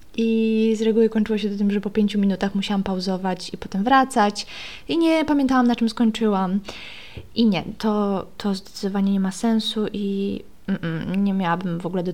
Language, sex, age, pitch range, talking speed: Polish, female, 20-39, 190-235 Hz, 185 wpm